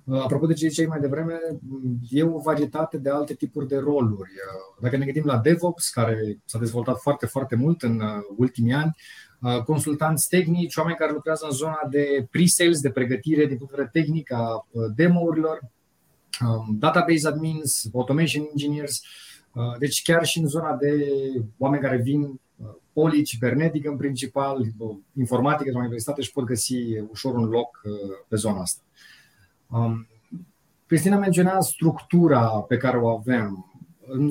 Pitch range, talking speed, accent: 125-155 Hz, 145 wpm, native